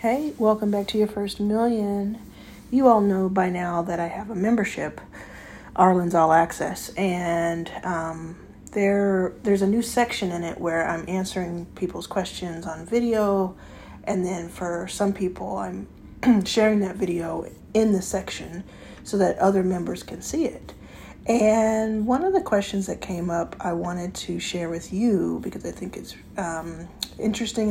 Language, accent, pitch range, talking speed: English, American, 180-215 Hz, 160 wpm